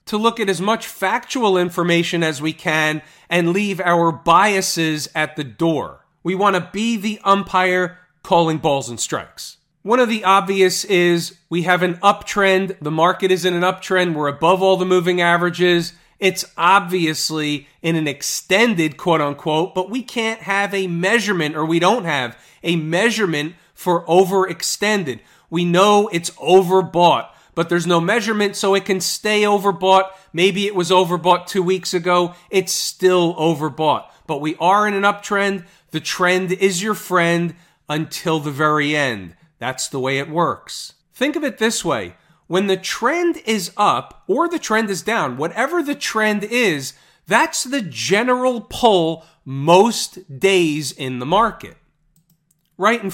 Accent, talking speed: American, 160 wpm